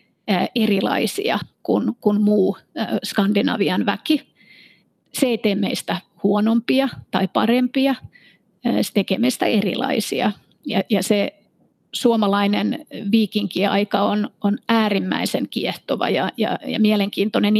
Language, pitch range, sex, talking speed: Finnish, 200-225 Hz, female, 100 wpm